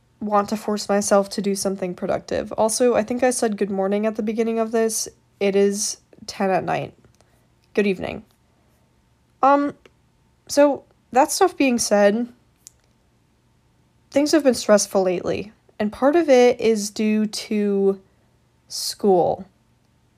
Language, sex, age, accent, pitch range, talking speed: English, female, 10-29, American, 200-245 Hz, 135 wpm